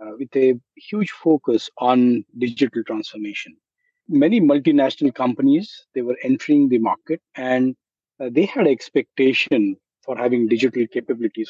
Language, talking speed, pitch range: English, 130 wpm, 125-170 Hz